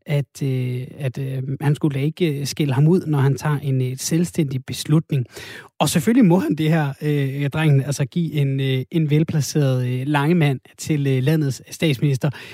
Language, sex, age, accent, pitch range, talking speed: Danish, male, 30-49, native, 140-170 Hz, 185 wpm